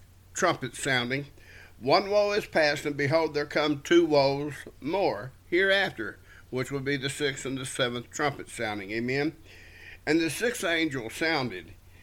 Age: 50-69